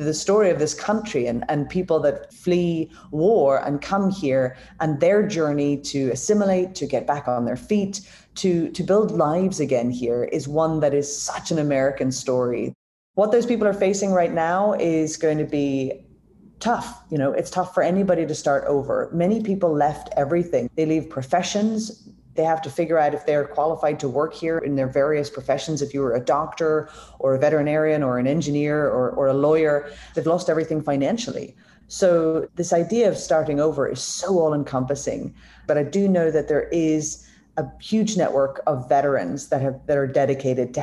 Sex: female